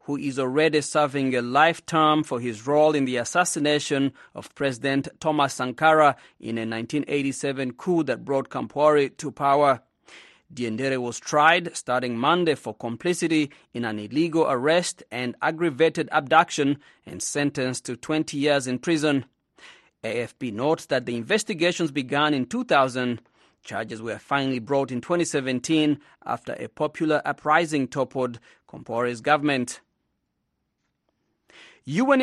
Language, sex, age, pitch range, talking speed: English, male, 30-49, 130-170 Hz, 125 wpm